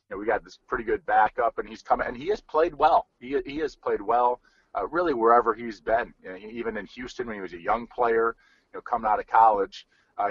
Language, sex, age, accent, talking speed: English, male, 40-59, American, 255 wpm